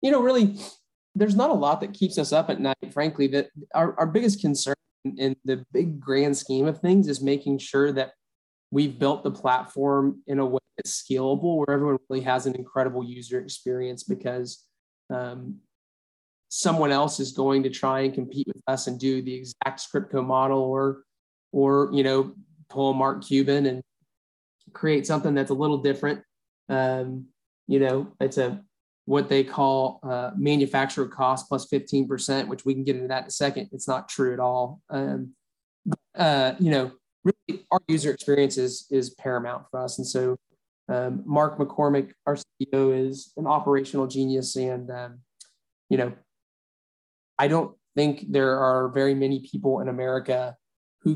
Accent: American